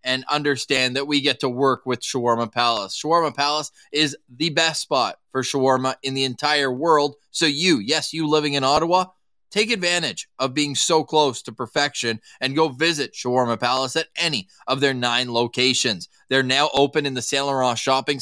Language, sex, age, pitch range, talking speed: English, male, 20-39, 130-165 Hz, 185 wpm